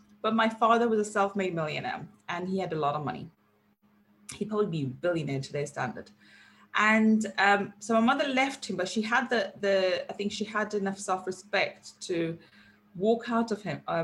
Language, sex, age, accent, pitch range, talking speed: English, female, 20-39, British, 175-215 Hz, 195 wpm